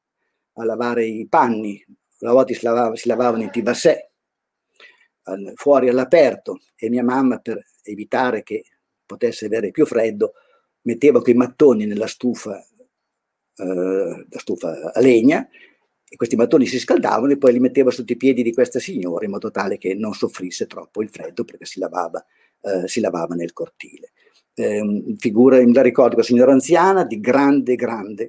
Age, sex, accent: 50-69, male, native